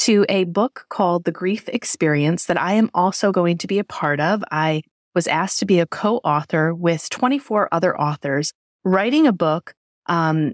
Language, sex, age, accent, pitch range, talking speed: English, female, 30-49, American, 170-215 Hz, 180 wpm